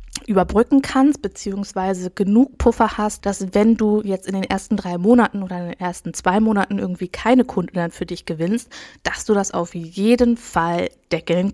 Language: German